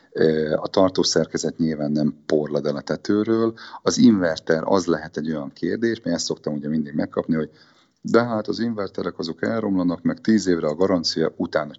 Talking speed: 165 wpm